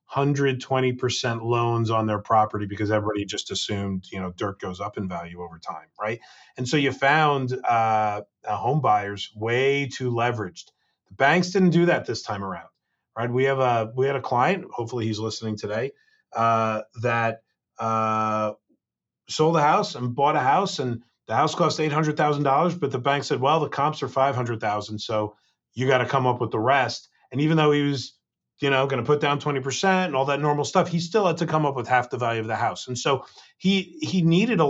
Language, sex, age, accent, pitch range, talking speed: English, male, 30-49, American, 110-150 Hz, 215 wpm